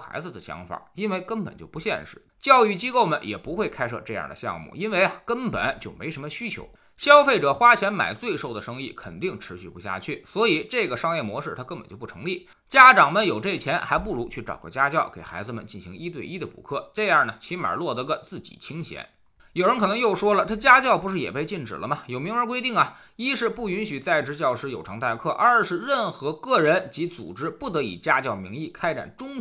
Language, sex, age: Chinese, male, 20-39